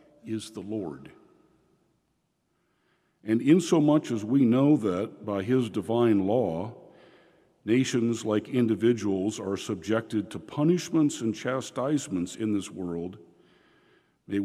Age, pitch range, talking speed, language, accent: 50-69, 105-145 Hz, 110 wpm, English, American